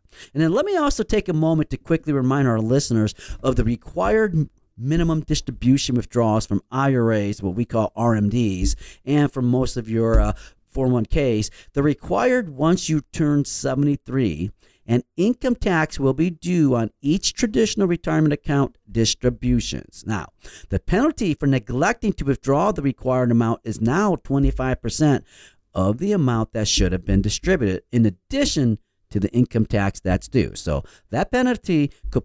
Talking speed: 155 wpm